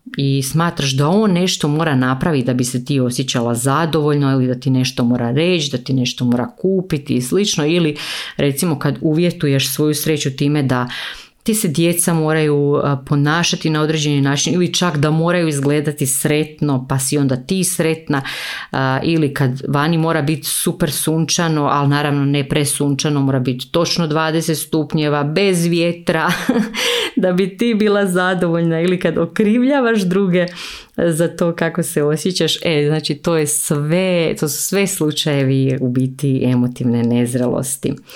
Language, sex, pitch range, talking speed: Croatian, female, 135-170 Hz, 155 wpm